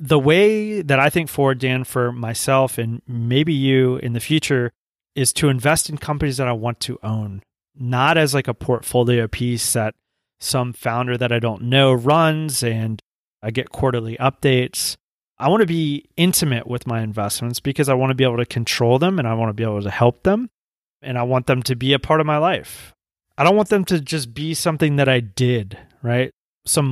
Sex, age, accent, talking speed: male, 30-49, American, 210 wpm